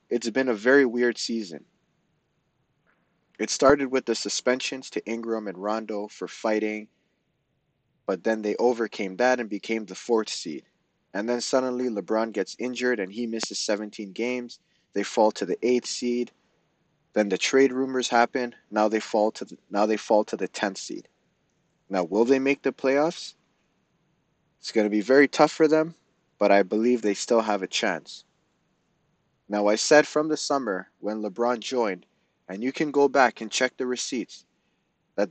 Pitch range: 105-135 Hz